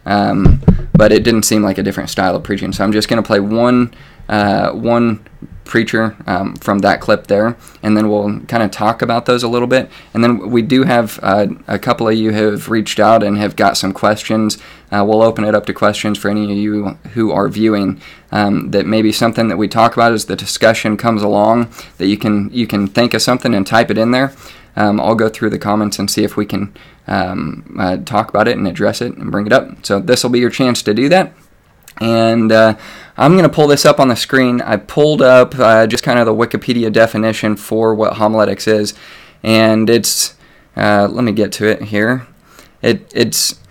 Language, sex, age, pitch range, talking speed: English, male, 20-39, 105-120 Hz, 225 wpm